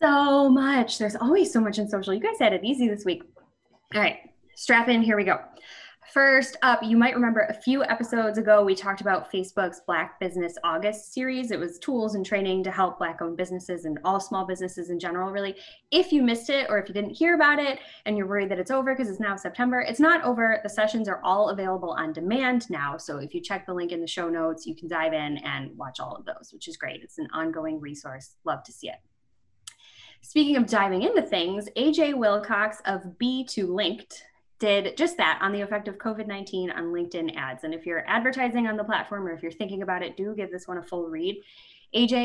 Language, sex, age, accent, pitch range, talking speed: English, female, 10-29, American, 175-235 Hz, 225 wpm